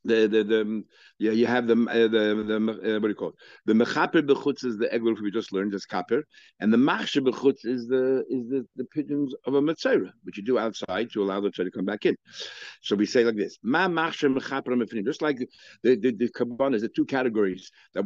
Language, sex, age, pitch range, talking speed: English, male, 60-79, 110-145 Hz, 225 wpm